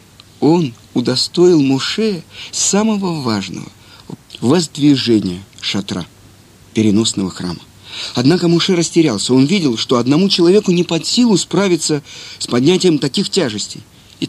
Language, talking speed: Russian, 110 wpm